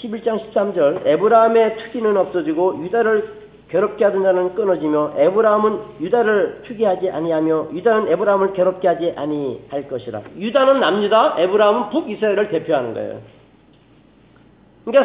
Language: Korean